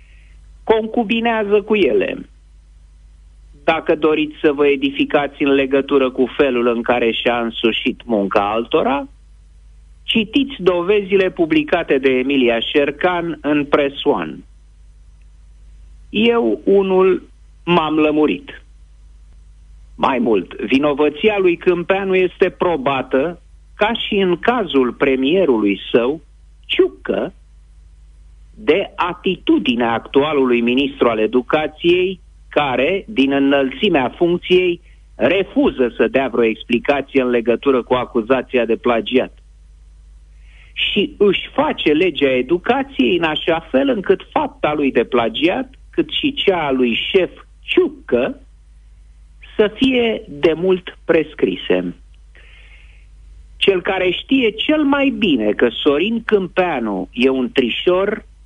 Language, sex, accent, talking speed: Romanian, male, native, 105 wpm